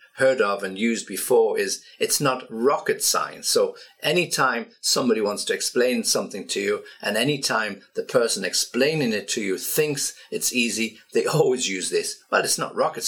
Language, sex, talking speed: English, male, 175 wpm